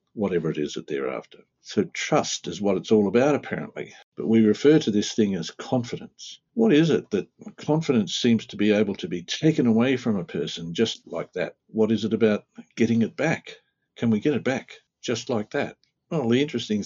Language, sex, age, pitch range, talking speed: English, male, 60-79, 105-140 Hz, 210 wpm